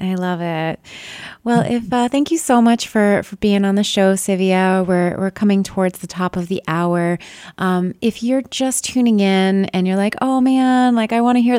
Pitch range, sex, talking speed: 165-220 Hz, female, 215 wpm